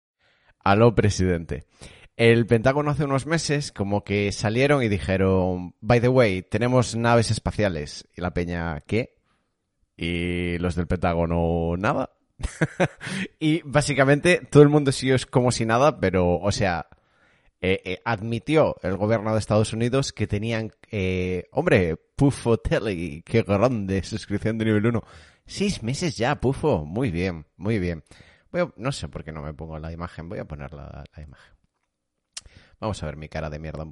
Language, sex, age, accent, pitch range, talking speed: Spanish, male, 30-49, Spanish, 90-125 Hz, 165 wpm